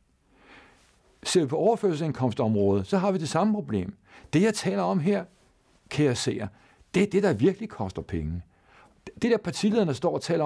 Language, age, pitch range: Danish, 60-79, 130-200 Hz